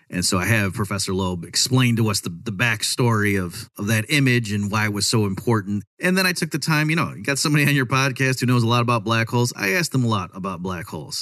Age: 30-49